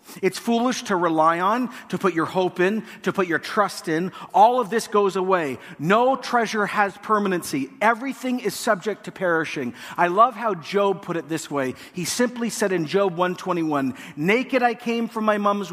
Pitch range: 175-230 Hz